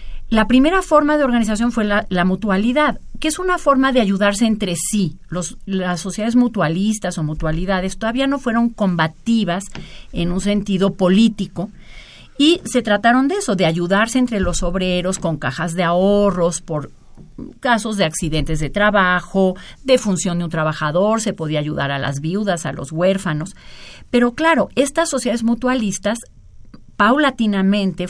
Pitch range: 165-230 Hz